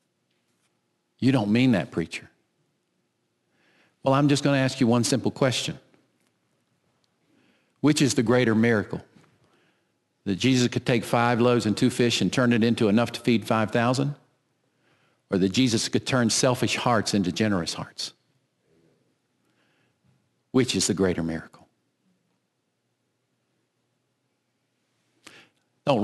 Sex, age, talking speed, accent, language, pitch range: male, 50-69, 120 wpm, American, English, 95-130 Hz